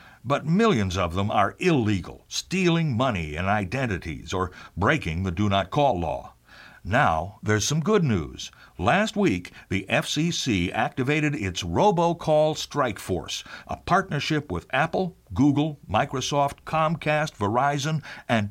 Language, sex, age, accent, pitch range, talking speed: English, male, 60-79, American, 95-155 Hz, 130 wpm